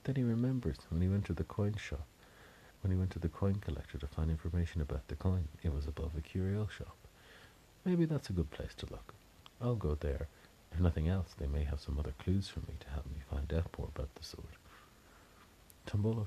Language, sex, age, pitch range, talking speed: English, male, 50-69, 80-95 Hz, 220 wpm